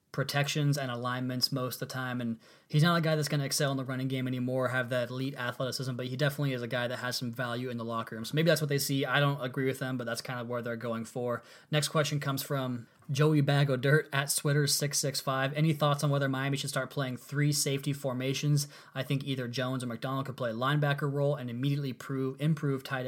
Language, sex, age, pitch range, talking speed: English, male, 20-39, 125-145 Hz, 250 wpm